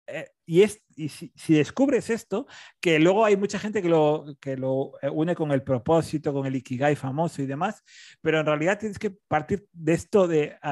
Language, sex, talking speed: Spanish, male, 205 wpm